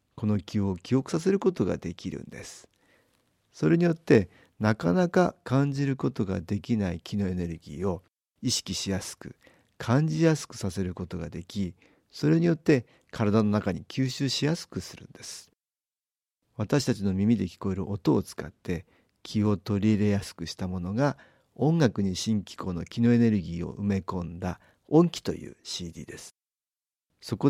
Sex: male